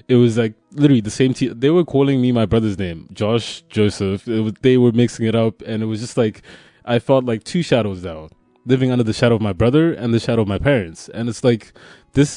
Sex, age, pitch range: male, 20-39, 110-130 Hz